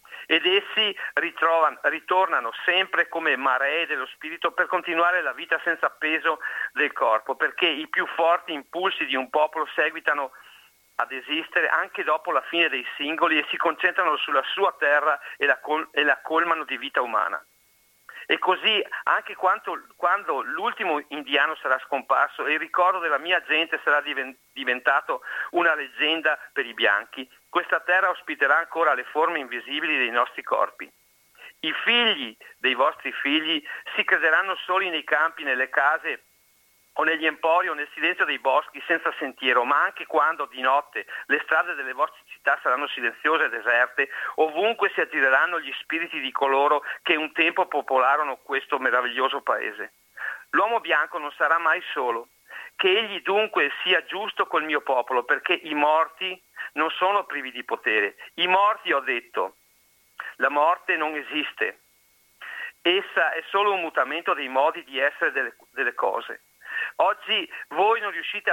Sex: male